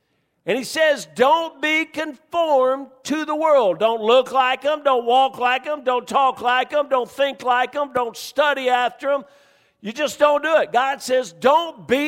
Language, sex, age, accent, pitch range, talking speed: English, male, 50-69, American, 160-265 Hz, 190 wpm